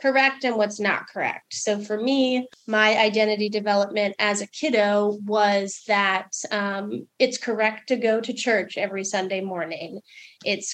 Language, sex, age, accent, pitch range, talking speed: English, female, 30-49, American, 200-225 Hz, 150 wpm